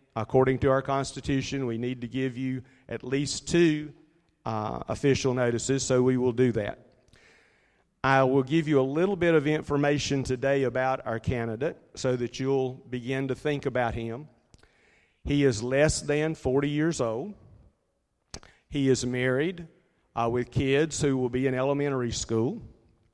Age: 50-69